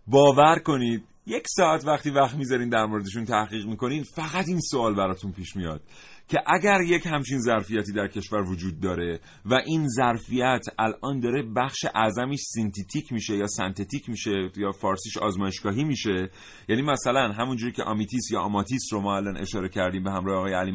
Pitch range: 105-135 Hz